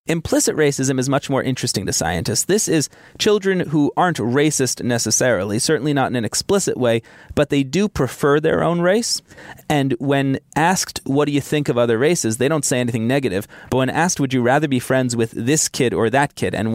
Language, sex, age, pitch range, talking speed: English, male, 30-49, 125-155 Hz, 210 wpm